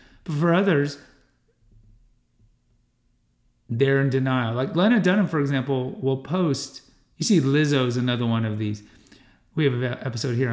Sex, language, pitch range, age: male, English, 120-150 Hz, 40-59